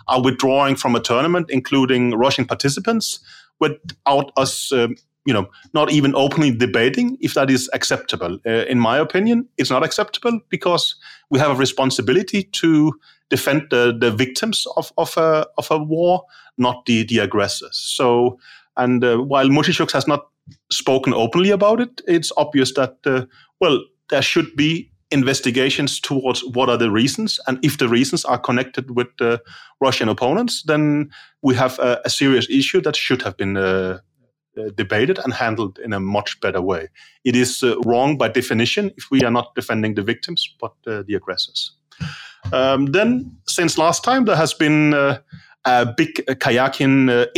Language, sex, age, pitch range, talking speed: English, male, 30-49, 125-155 Hz, 170 wpm